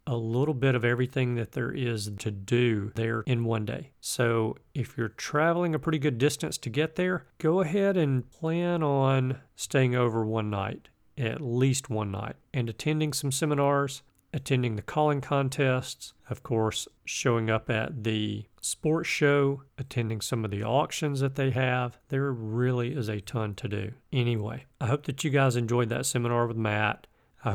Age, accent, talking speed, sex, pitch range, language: 40-59, American, 175 wpm, male, 120-145 Hz, English